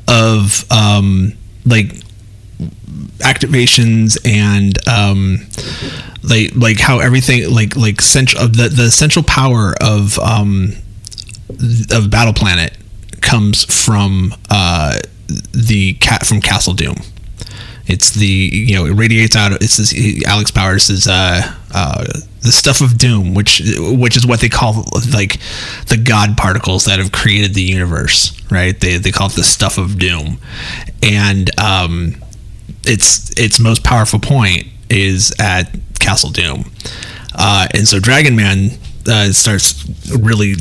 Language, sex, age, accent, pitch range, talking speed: English, male, 30-49, American, 100-120 Hz, 135 wpm